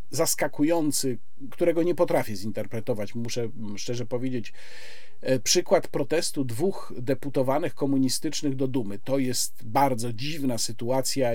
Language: Polish